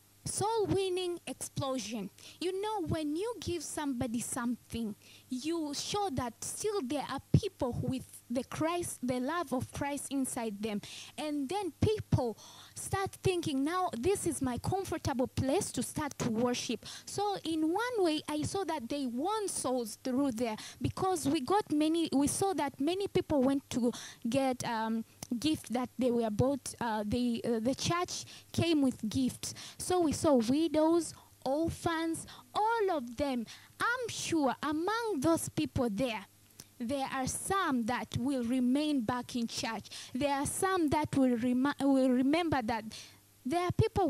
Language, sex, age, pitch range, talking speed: English, female, 20-39, 250-340 Hz, 150 wpm